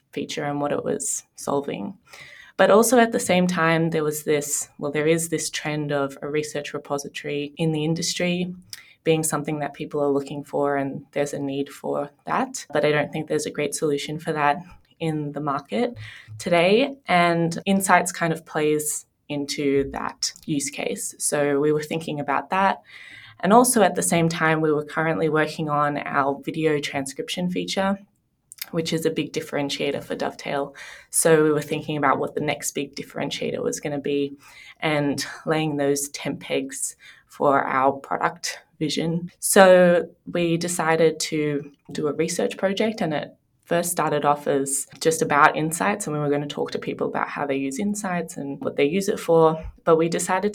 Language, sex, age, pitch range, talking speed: English, female, 20-39, 145-175 Hz, 180 wpm